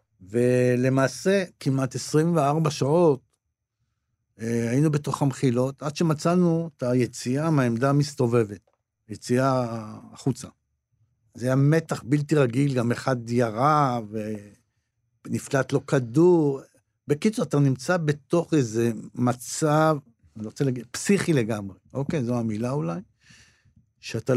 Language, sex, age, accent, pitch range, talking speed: Hebrew, male, 60-79, native, 115-145 Hz, 105 wpm